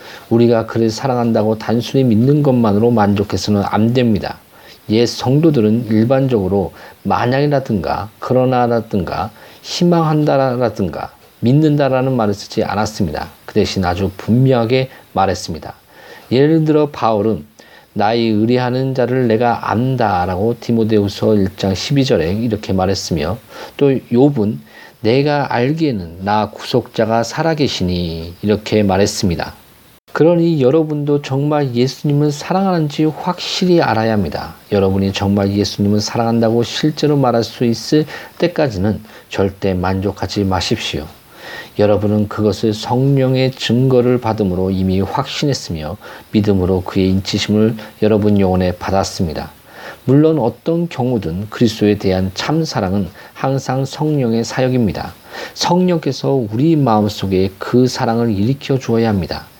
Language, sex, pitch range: Korean, male, 100-130 Hz